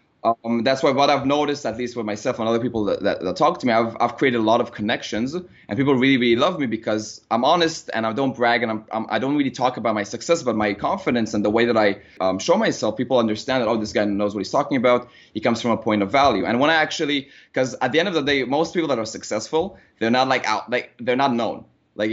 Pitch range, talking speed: 110-140 Hz, 280 wpm